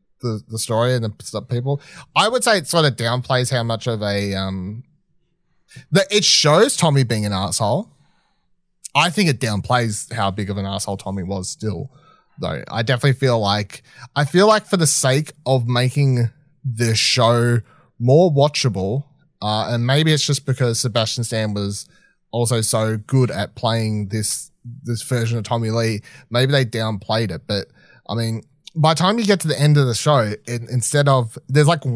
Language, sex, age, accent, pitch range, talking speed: English, male, 30-49, Australian, 110-140 Hz, 180 wpm